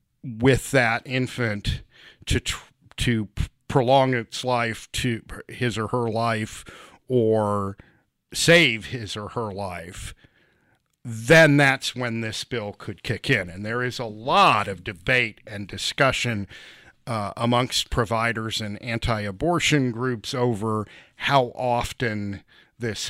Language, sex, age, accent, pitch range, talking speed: English, male, 50-69, American, 110-130 Hz, 120 wpm